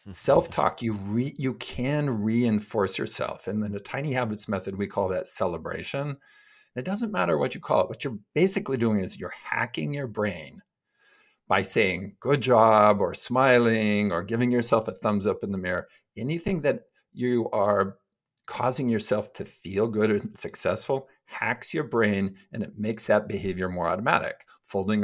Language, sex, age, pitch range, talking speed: English, male, 50-69, 100-135 Hz, 170 wpm